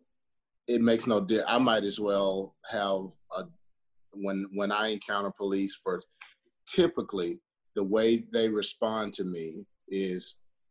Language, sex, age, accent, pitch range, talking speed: English, male, 40-59, American, 95-110 Hz, 135 wpm